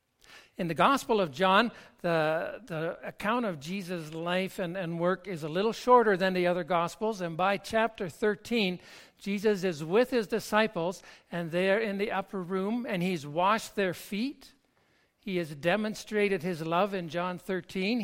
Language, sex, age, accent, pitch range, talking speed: English, male, 60-79, American, 165-210 Hz, 170 wpm